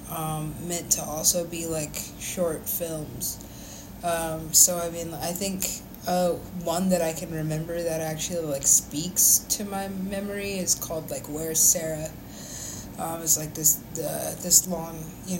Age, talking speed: 20-39, 155 wpm